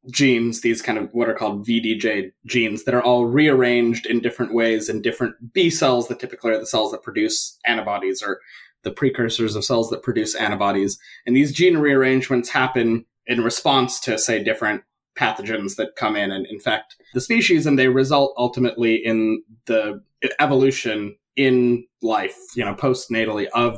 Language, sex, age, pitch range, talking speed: English, male, 20-39, 115-140 Hz, 170 wpm